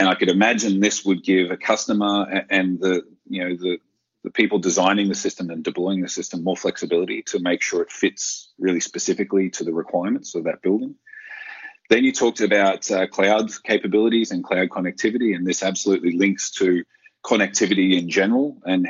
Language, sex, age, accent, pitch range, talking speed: English, male, 30-49, Australian, 90-110 Hz, 180 wpm